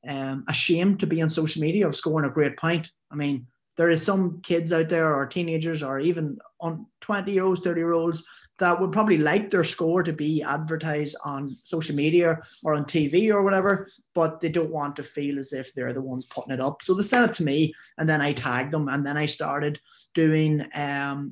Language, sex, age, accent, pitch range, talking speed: English, male, 20-39, Irish, 150-175 Hz, 220 wpm